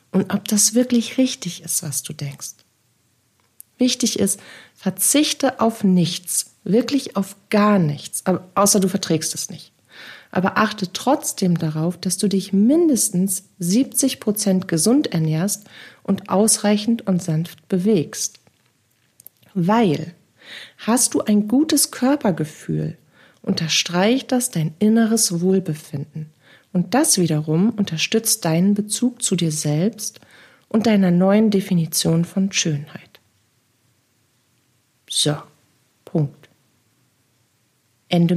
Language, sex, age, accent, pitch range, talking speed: German, female, 40-59, German, 160-215 Hz, 105 wpm